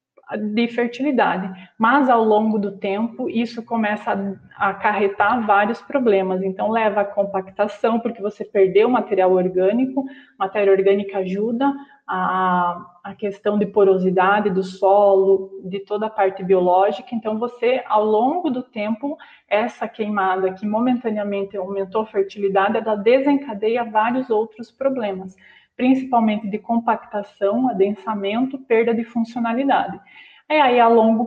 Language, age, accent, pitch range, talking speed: Portuguese, 20-39, Brazilian, 200-240 Hz, 125 wpm